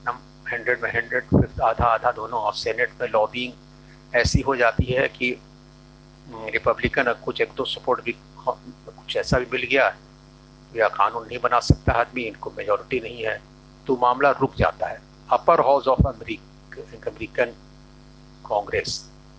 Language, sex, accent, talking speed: Hindi, male, native, 150 wpm